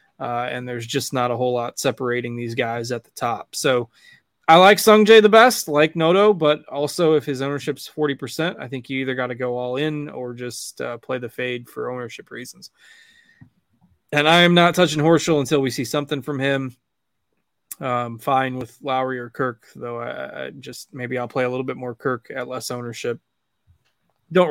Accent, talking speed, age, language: American, 195 wpm, 20-39, English